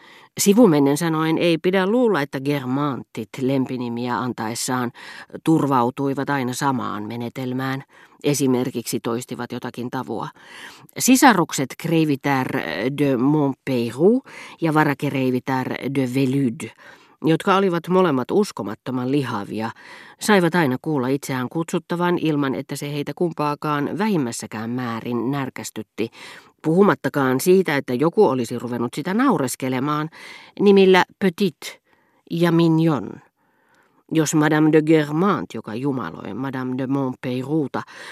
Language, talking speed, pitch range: Finnish, 100 wpm, 125-165 Hz